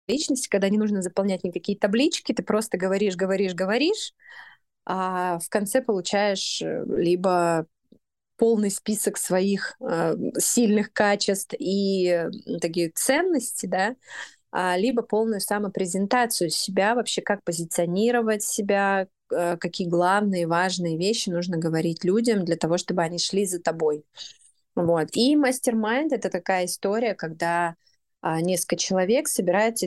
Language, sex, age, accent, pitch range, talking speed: Russian, female, 20-39, native, 175-225 Hz, 115 wpm